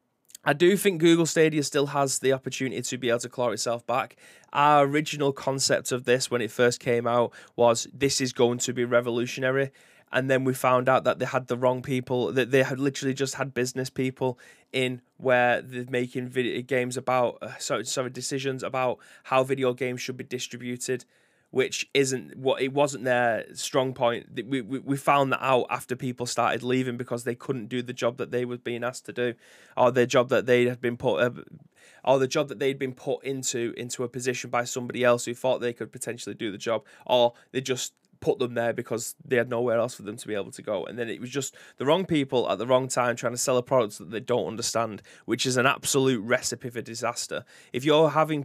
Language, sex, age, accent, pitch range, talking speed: English, male, 20-39, British, 120-135 Hz, 225 wpm